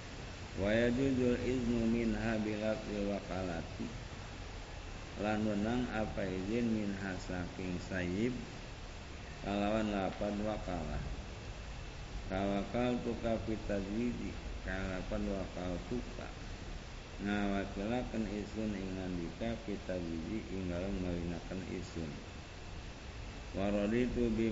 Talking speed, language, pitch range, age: 75 wpm, Indonesian, 90-110 Hz, 50-69